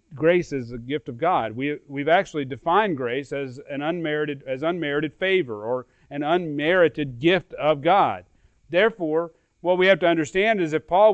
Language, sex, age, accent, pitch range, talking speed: English, male, 40-59, American, 155-200 Hz, 170 wpm